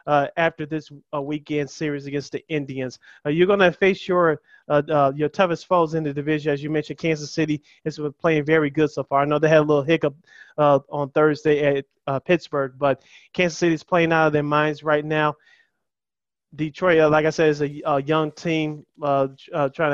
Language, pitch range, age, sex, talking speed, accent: English, 145-160 Hz, 20-39, male, 210 wpm, American